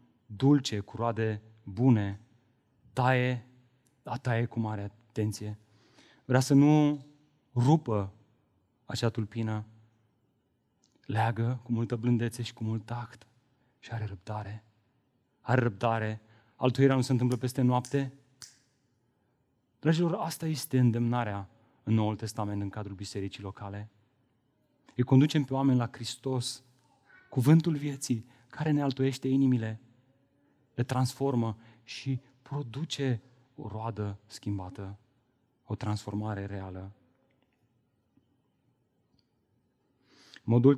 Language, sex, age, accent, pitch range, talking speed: Romanian, male, 30-49, native, 110-130 Hz, 100 wpm